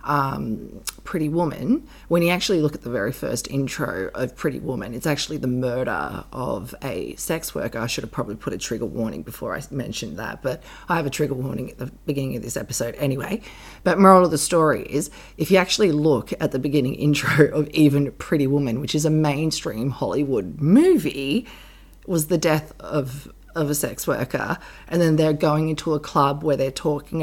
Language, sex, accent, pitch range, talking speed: English, female, Australian, 145-195 Hz, 200 wpm